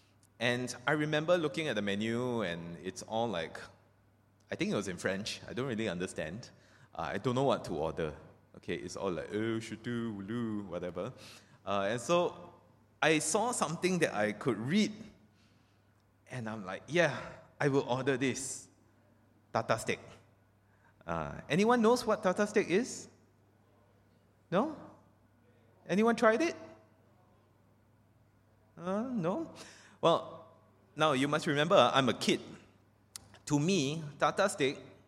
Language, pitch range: English, 105-145 Hz